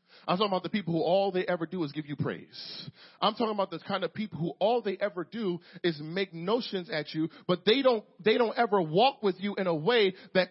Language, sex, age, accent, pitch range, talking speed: English, male, 40-59, American, 180-240 Hz, 250 wpm